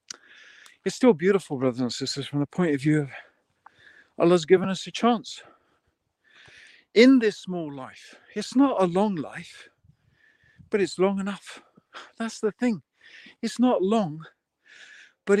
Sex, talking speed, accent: male, 145 wpm, British